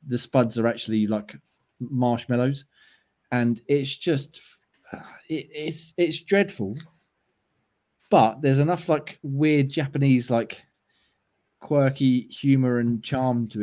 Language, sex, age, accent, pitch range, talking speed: English, male, 20-39, British, 110-135 Hz, 110 wpm